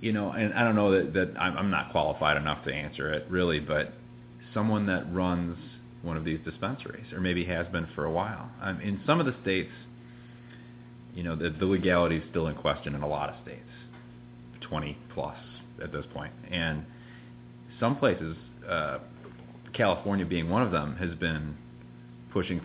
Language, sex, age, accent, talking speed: English, male, 30-49, American, 180 wpm